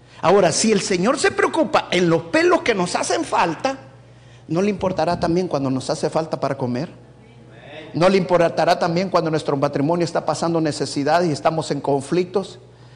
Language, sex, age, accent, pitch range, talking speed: Spanish, male, 50-69, Mexican, 130-215 Hz, 170 wpm